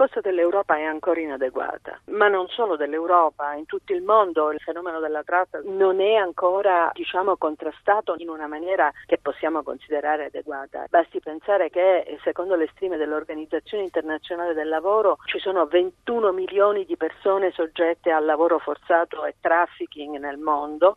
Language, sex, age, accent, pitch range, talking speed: Italian, female, 50-69, native, 155-195 Hz, 155 wpm